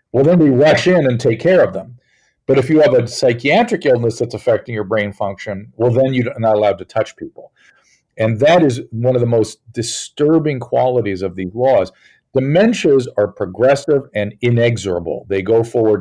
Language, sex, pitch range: English, male, 110-140 Hz